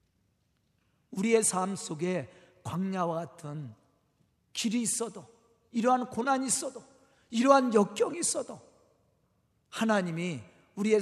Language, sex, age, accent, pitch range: Korean, male, 40-59, native, 210-330 Hz